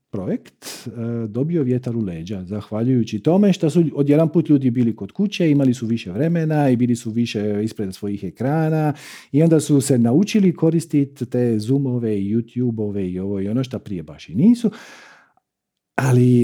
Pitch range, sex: 115-160 Hz, male